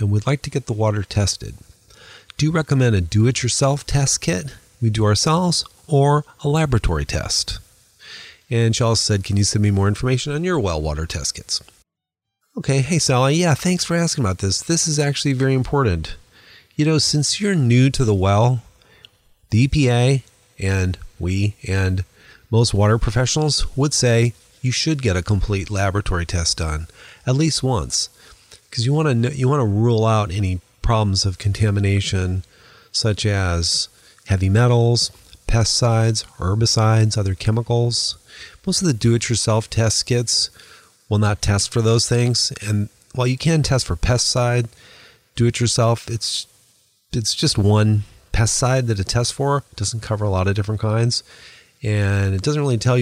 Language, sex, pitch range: English, male, 100-130 Hz